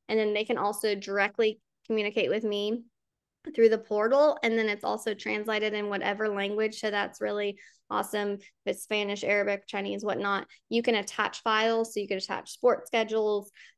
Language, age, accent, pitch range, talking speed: English, 10-29, American, 200-225 Hz, 175 wpm